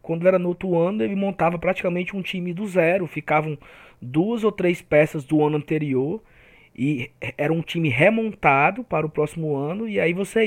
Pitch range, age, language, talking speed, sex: 150-195 Hz, 20-39, Portuguese, 185 wpm, male